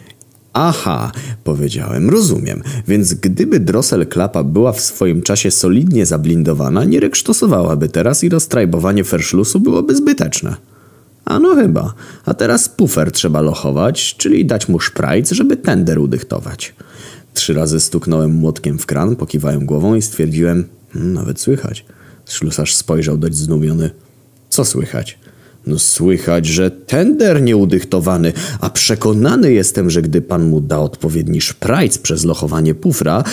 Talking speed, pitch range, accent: 130 wpm, 80-130 Hz, native